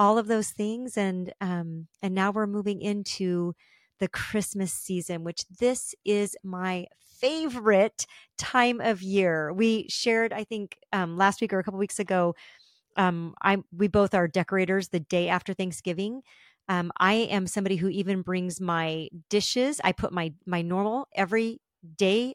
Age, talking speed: 40-59, 165 wpm